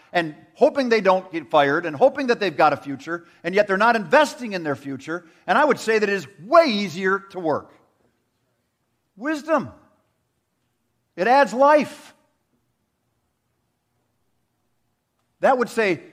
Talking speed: 145 wpm